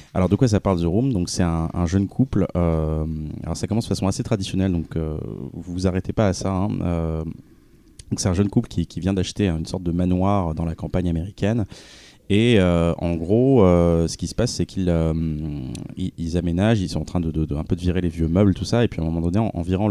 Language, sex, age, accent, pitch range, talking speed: French, male, 30-49, French, 85-105 Hz, 260 wpm